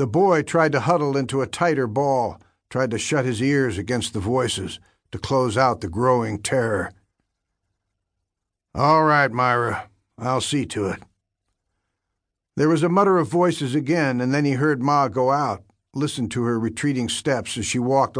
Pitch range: 100-135 Hz